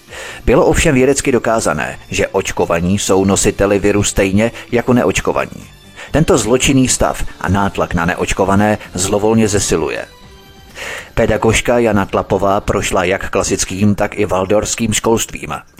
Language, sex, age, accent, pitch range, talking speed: Czech, male, 30-49, native, 95-115 Hz, 120 wpm